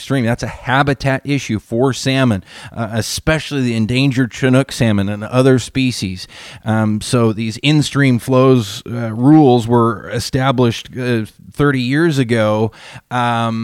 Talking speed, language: 130 wpm, English